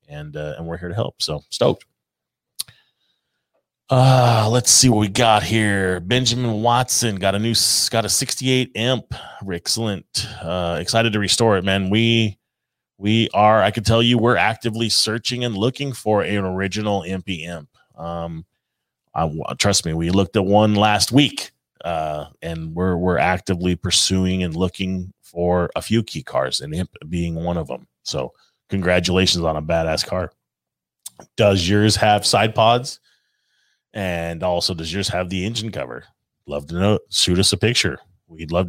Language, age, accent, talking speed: English, 30-49, American, 165 wpm